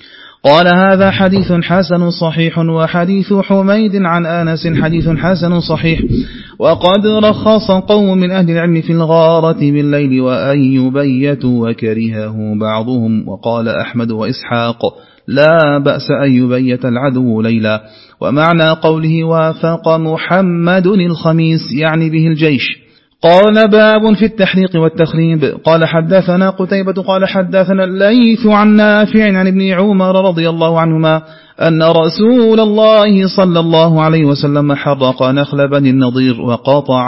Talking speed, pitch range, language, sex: 115 wpm, 130-175 Hz, Arabic, male